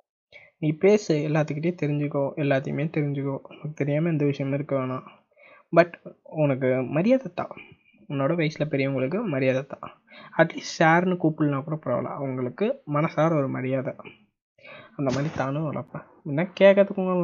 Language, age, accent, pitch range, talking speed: Tamil, 20-39, native, 140-170 Hz, 120 wpm